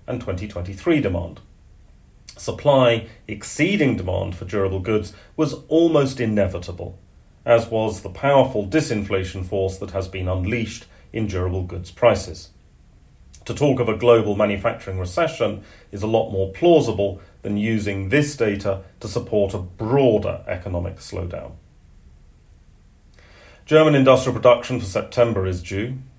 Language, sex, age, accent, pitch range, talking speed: English, male, 40-59, British, 95-120 Hz, 125 wpm